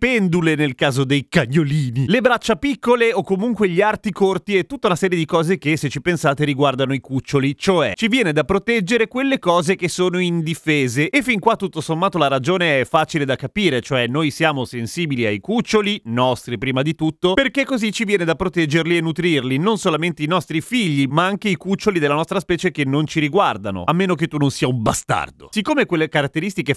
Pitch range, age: 145-195 Hz, 30-49